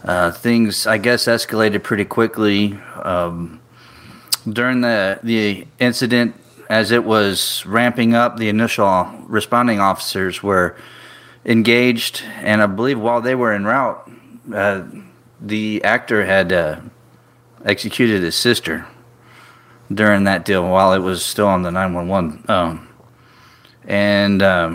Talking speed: 125 wpm